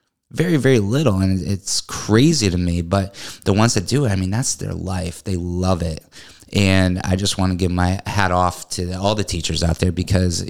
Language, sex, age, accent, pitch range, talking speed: English, male, 20-39, American, 90-100 Hz, 215 wpm